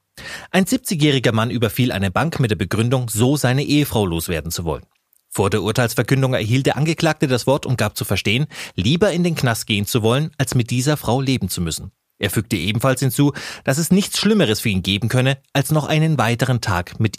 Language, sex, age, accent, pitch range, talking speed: German, male, 30-49, German, 110-165 Hz, 205 wpm